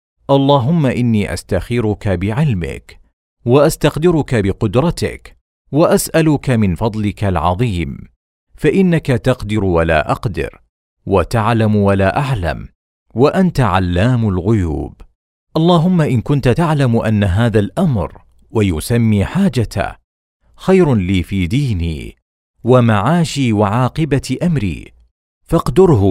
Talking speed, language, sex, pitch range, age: 85 wpm, Arabic, male, 90-140 Hz, 50-69